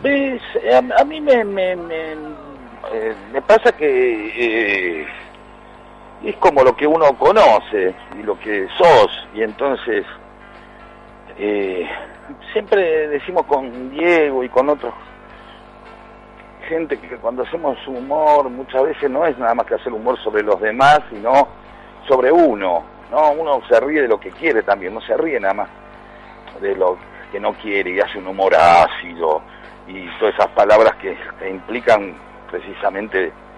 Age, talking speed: 50-69, 145 wpm